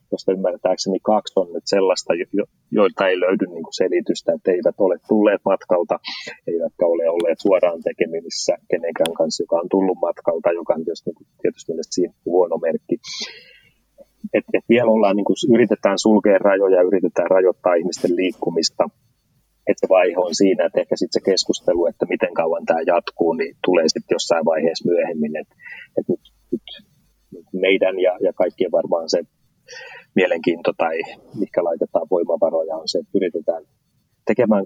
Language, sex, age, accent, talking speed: Finnish, male, 30-49, native, 155 wpm